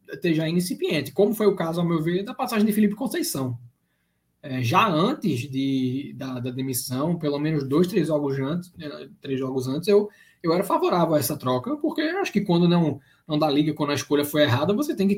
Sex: male